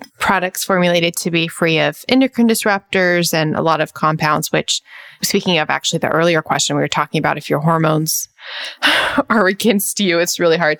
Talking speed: 185 wpm